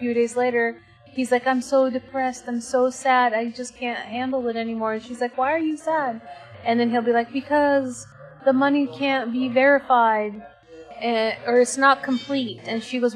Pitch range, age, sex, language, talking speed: 210-255 Hz, 30-49, female, English, 195 wpm